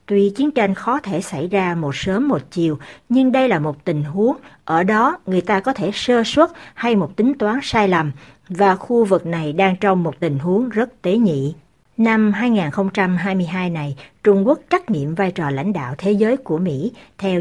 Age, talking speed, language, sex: 60-79, 205 wpm, Vietnamese, female